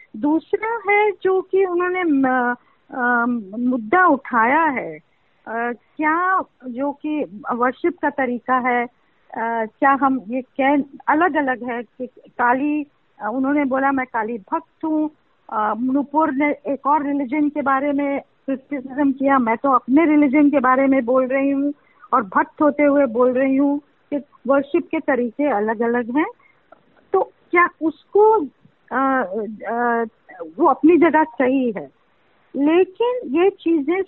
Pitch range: 255-330 Hz